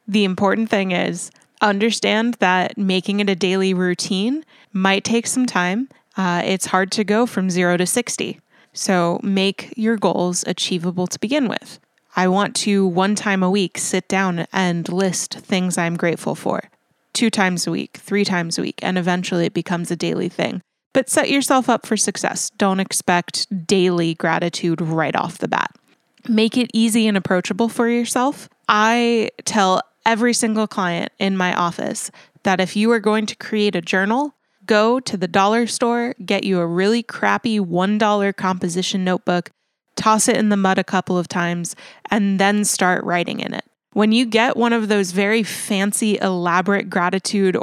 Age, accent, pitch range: 20-39, American, 185-225 Hz